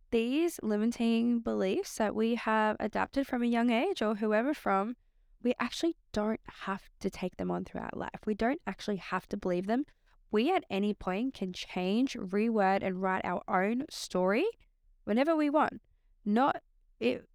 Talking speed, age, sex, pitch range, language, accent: 165 wpm, 10-29, female, 195-240 Hz, English, Australian